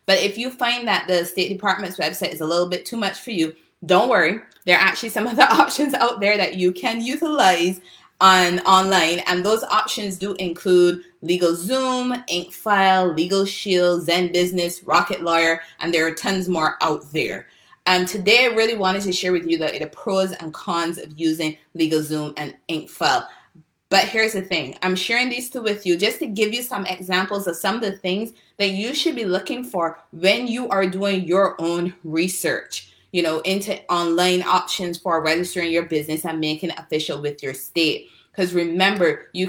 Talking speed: 190 wpm